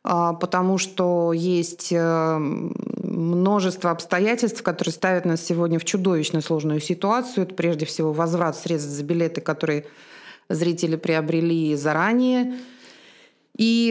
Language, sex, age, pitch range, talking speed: Russian, female, 30-49, 175-220 Hz, 110 wpm